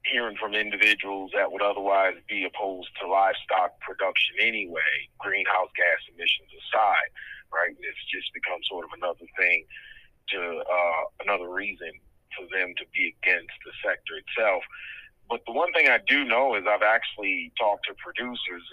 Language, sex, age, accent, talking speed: English, male, 40-59, American, 155 wpm